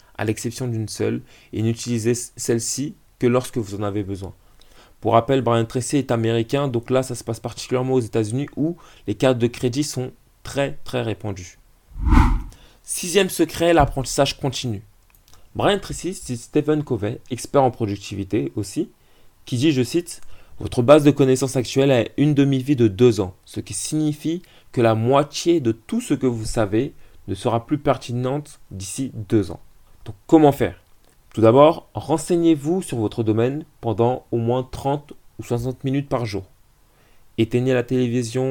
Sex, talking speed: male, 165 wpm